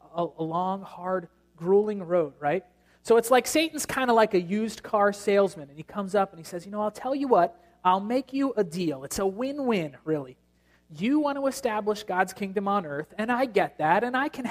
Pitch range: 170-230 Hz